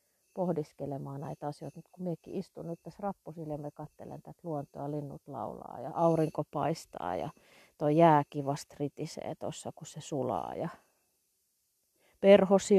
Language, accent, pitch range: Finnish, native, 140-180 Hz